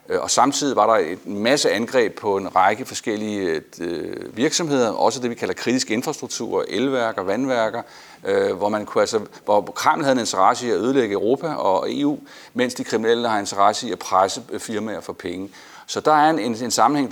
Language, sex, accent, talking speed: Danish, male, native, 180 wpm